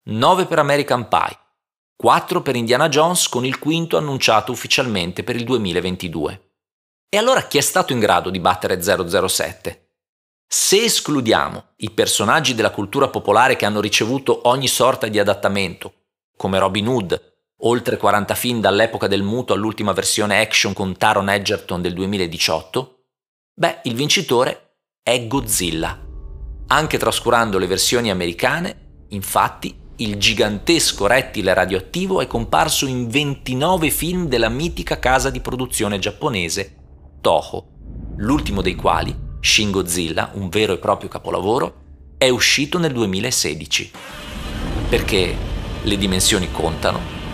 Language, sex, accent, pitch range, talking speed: Italian, male, native, 95-125 Hz, 130 wpm